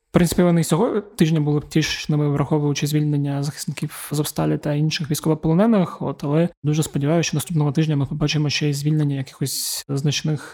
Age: 20-39